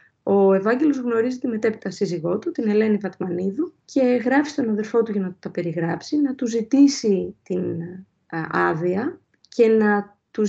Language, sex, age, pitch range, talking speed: Greek, female, 30-49, 185-230 Hz, 160 wpm